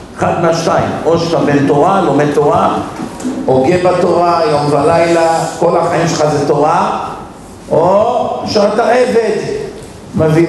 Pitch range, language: 145-180 Hz, Hebrew